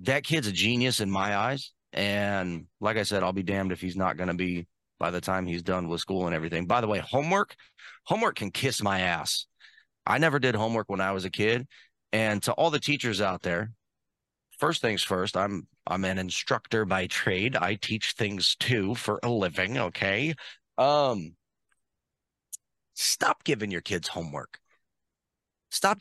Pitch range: 100-150 Hz